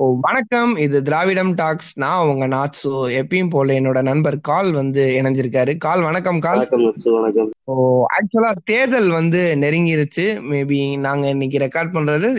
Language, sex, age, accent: Tamil, male, 20-39, native